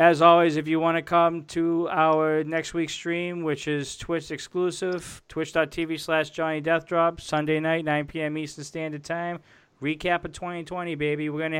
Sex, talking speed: male, 170 wpm